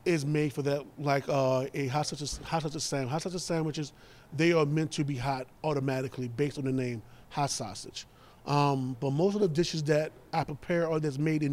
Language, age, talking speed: English, 30-49, 215 wpm